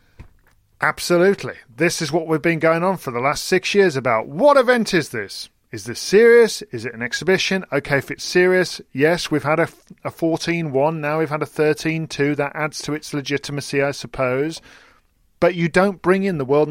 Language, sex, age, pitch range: English, male, 40-59, 125-175 Hz